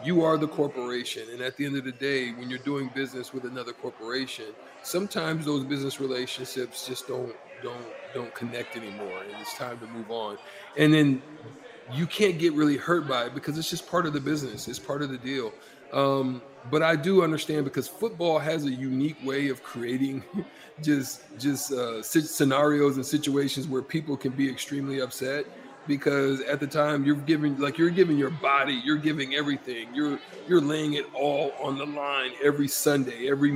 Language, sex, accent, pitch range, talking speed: English, male, American, 135-155 Hz, 190 wpm